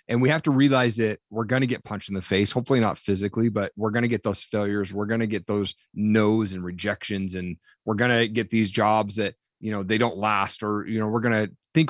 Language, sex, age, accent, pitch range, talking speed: English, male, 30-49, American, 105-130 Hz, 260 wpm